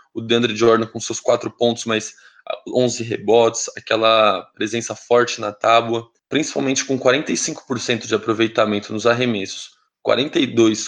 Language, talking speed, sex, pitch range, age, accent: Portuguese, 125 wpm, male, 110-125 Hz, 20-39, Brazilian